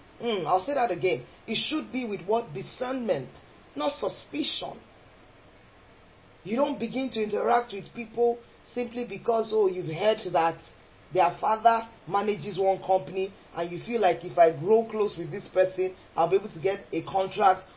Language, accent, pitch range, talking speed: English, Nigerian, 190-255 Hz, 165 wpm